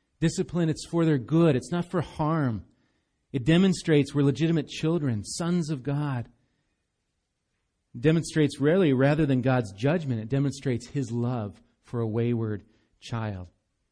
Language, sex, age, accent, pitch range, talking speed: English, male, 40-59, American, 120-160 Hz, 140 wpm